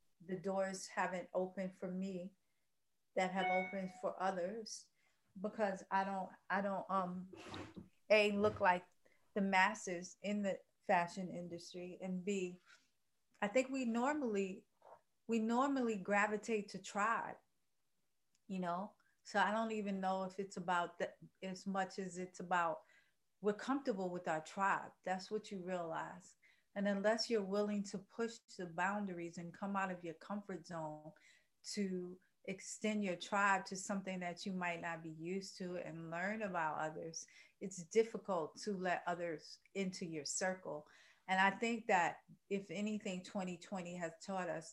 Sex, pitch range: female, 175-205 Hz